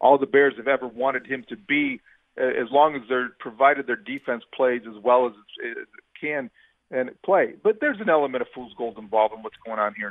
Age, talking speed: 40-59, 220 wpm